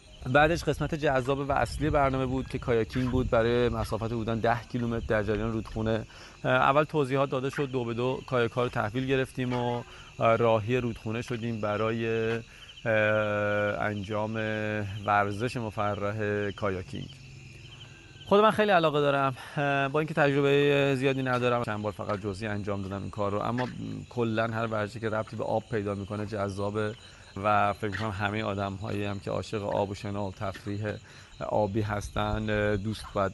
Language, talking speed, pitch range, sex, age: Persian, 150 wpm, 105-125 Hz, male, 30-49